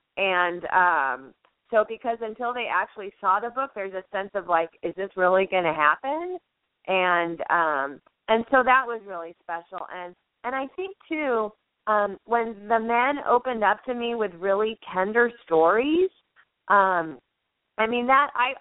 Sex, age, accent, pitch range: female, 30-49, American, 170-225 Hz